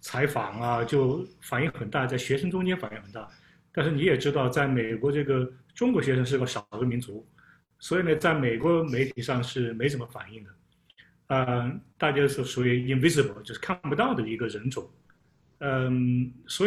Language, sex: Chinese, male